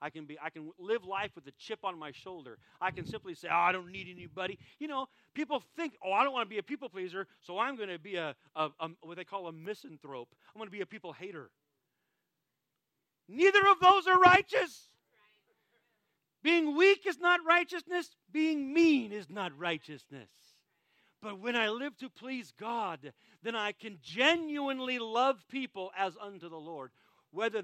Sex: male